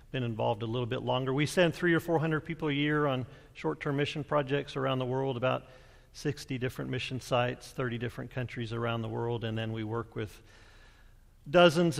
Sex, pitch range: male, 115-145 Hz